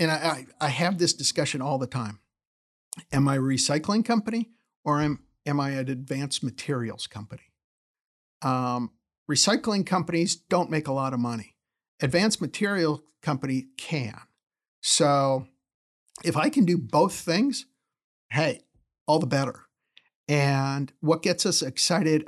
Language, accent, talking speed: English, American, 135 wpm